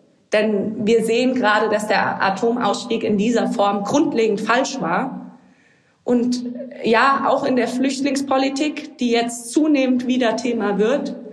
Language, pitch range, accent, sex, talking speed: German, 205-255 Hz, German, female, 130 wpm